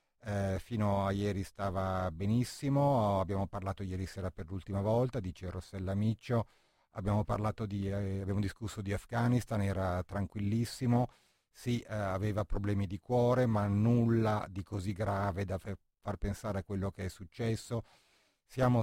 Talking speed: 135 wpm